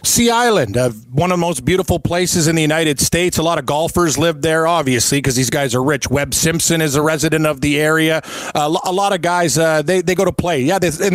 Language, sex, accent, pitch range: English, male, American, 150-175 Hz